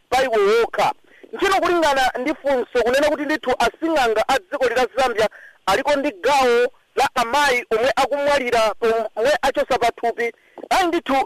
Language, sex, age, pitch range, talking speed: English, male, 50-69, 230-310 Hz, 115 wpm